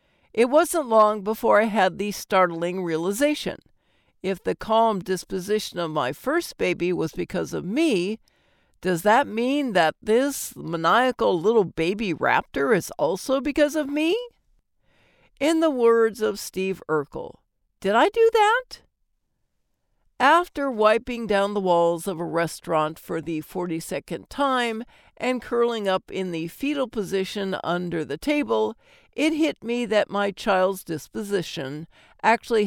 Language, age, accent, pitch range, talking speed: English, 60-79, American, 175-250 Hz, 140 wpm